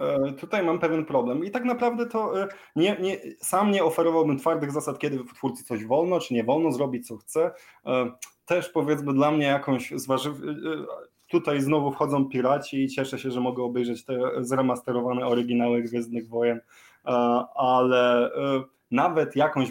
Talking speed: 150 wpm